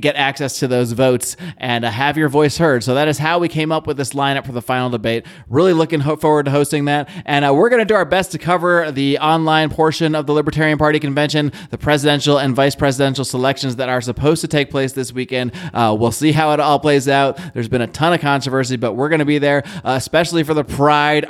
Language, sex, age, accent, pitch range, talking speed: English, male, 20-39, American, 130-155 Hz, 250 wpm